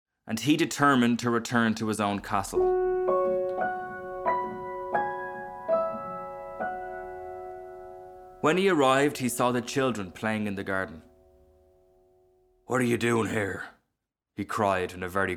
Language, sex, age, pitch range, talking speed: English, male, 20-39, 95-125 Hz, 115 wpm